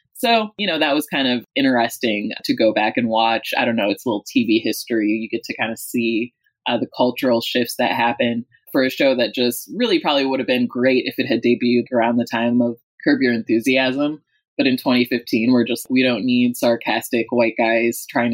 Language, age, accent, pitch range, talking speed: English, 20-39, American, 120-195 Hz, 220 wpm